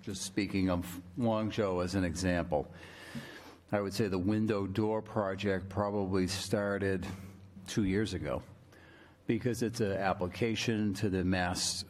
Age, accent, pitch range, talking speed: 50-69, American, 95-110 Hz, 135 wpm